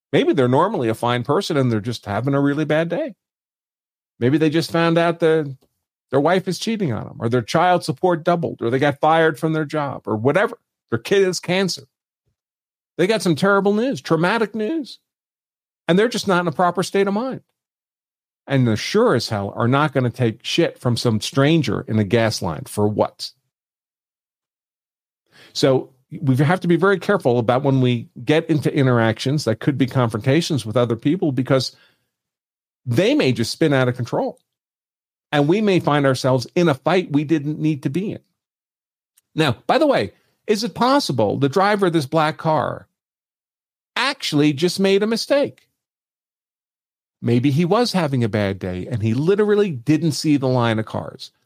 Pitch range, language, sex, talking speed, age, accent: 125-175 Hz, English, male, 185 wpm, 50-69, American